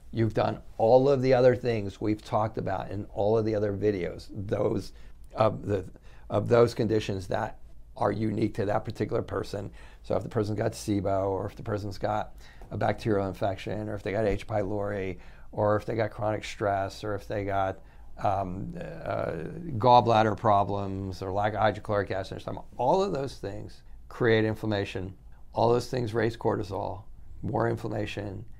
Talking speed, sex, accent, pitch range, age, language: 170 wpm, male, American, 100-115 Hz, 50-69, English